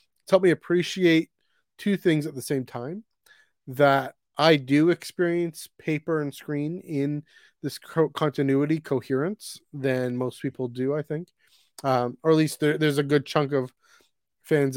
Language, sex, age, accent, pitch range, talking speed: English, male, 30-49, American, 125-160 Hz, 150 wpm